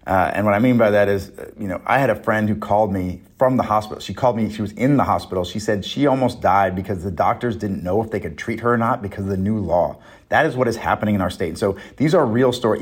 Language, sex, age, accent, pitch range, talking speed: English, male, 30-49, American, 105-130 Hz, 295 wpm